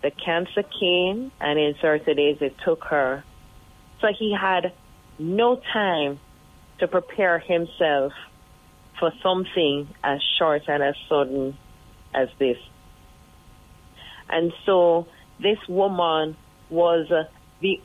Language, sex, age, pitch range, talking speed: English, female, 30-49, 145-180 Hz, 110 wpm